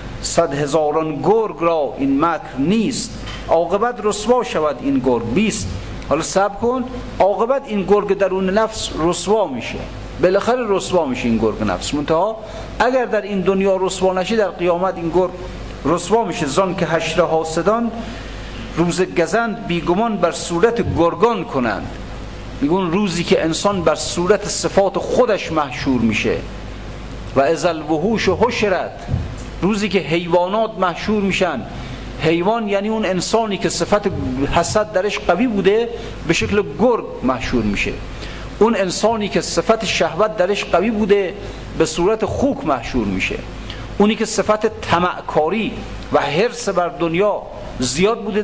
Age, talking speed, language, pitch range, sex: 50-69, 140 wpm, Persian, 160-210 Hz, male